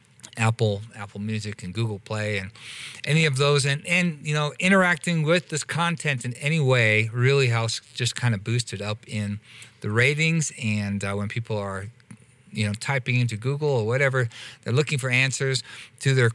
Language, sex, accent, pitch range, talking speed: English, male, American, 115-135 Hz, 185 wpm